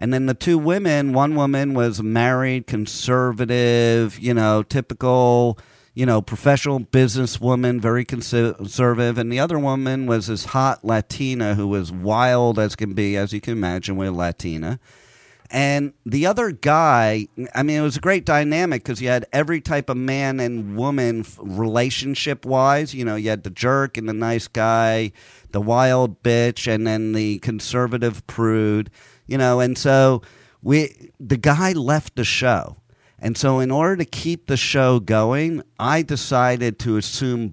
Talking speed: 165 wpm